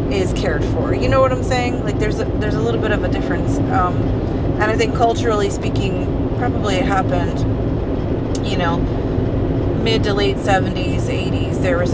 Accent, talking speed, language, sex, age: American, 180 wpm, English, female, 30-49